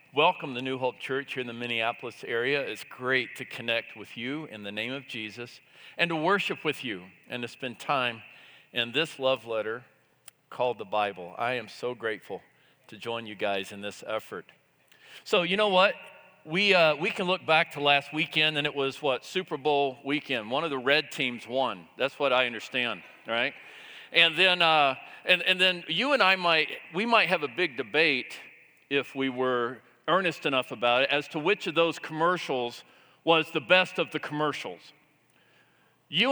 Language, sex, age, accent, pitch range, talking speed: English, male, 50-69, American, 130-170 Hz, 190 wpm